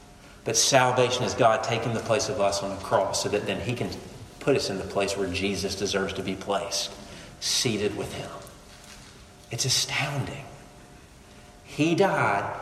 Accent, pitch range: American, 100-130 Hz